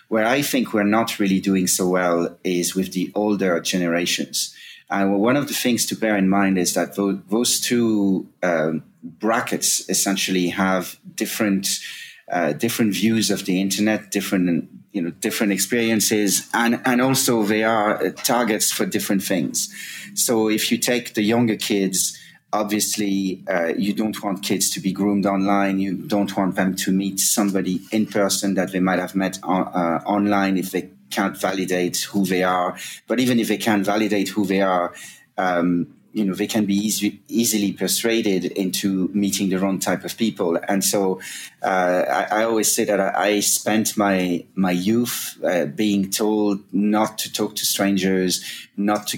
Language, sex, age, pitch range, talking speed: English, male, 30-49, 95-105 Hz, 170 wpm